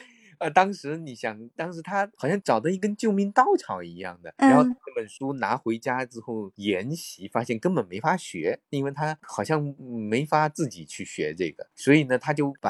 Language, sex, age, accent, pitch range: Chinese, male, 20-39, native, 105-160 Hz